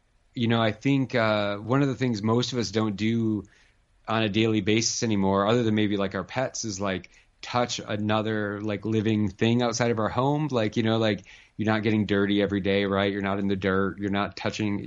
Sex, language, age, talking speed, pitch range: male, English, 30-49, 220 wpm, 100-115 Hz